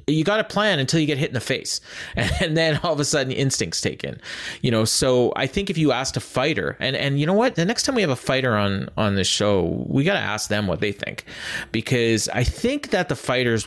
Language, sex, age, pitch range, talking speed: English, male, 30-49, 105-135 Hz, 265 wpm